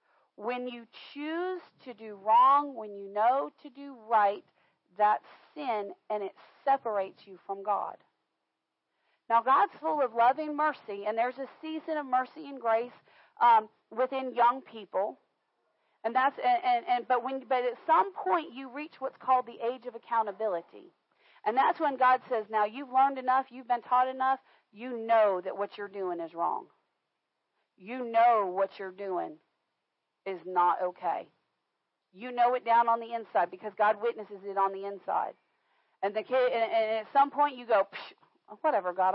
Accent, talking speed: American, 170 wpm